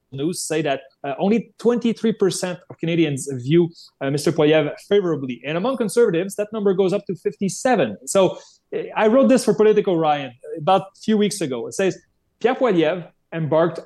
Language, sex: English, male